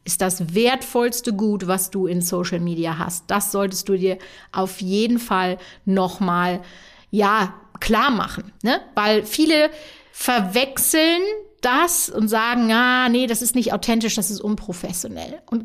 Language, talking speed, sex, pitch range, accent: German, 145 wpm, female, 190-250 Hz, German